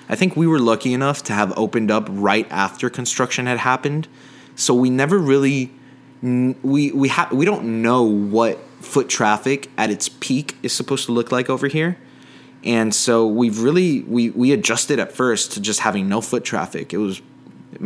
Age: 20-39